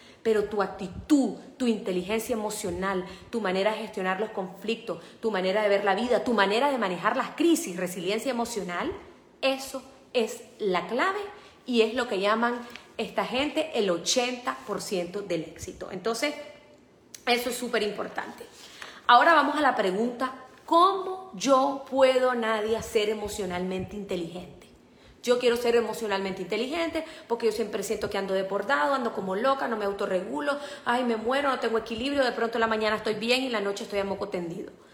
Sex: female